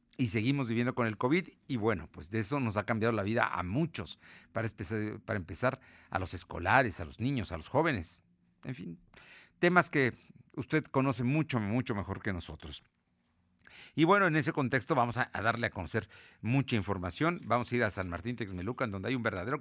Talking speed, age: 195 wpm, 50-69